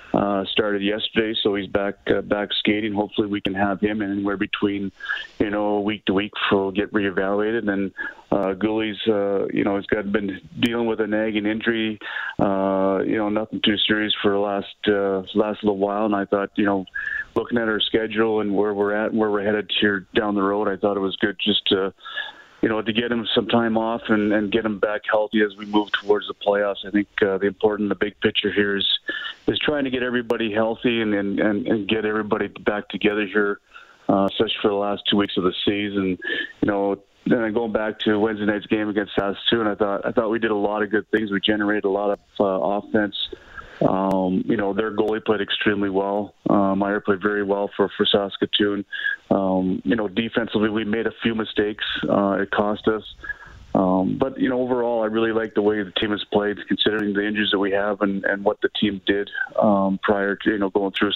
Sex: male